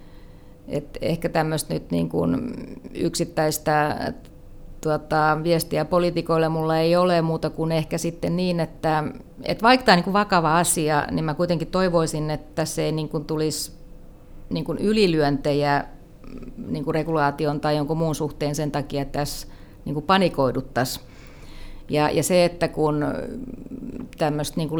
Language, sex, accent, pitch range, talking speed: Finnish, female, native, 145-160 Hz, 135 wpm